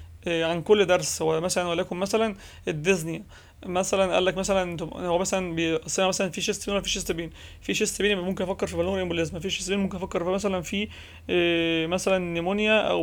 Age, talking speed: 30-49, 190 wpm